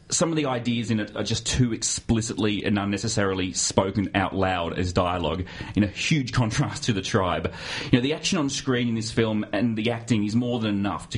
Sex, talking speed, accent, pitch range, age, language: male, 220 wpm, Australian, 100-125 Hz, 30-49, English